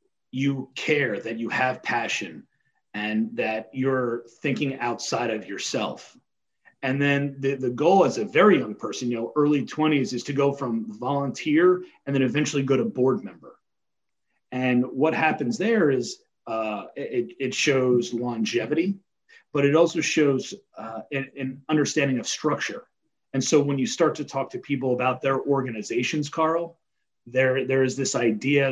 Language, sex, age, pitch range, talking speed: English, male, 30-49, 120-145 Hz, 160 wpm